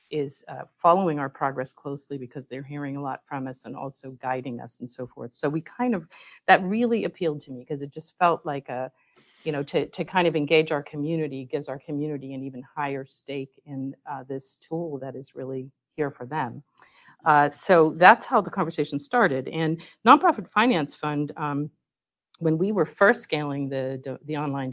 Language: English